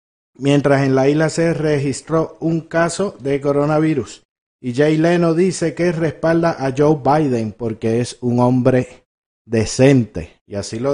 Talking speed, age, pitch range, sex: 150 wpm, 50-69, 120-160 Hz, male